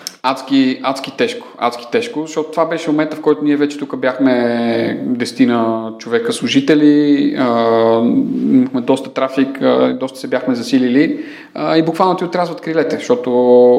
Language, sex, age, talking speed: Bulgarian, male, 30-49, 130 wpm